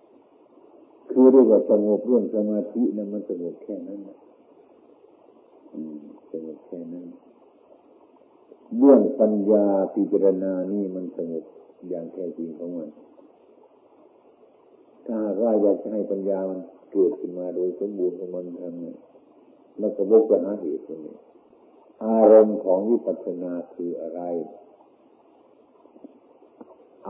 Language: Thai